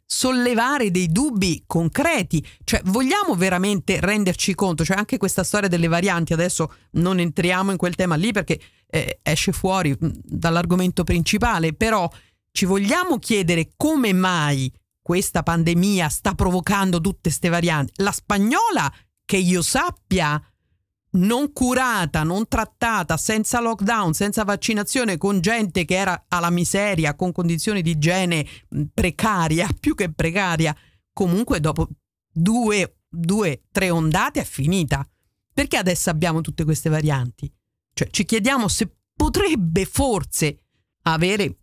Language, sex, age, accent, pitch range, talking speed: Dutch, female, 40-59, Italian, 165-205 Hz, 130 wpm